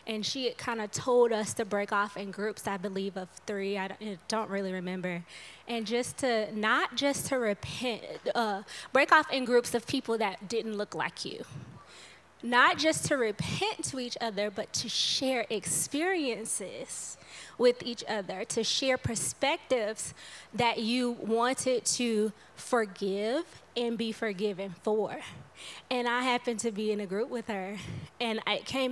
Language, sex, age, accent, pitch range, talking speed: English, female, 20-39, American, 205-245 Hz, 160 wpm